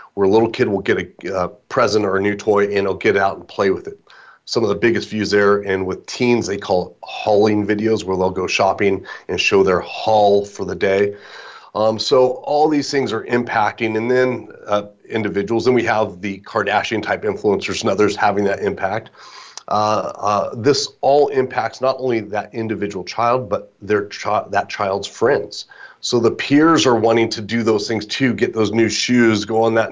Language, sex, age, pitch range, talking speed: English, male, 30-49, 100-120 Hz, 205 wpm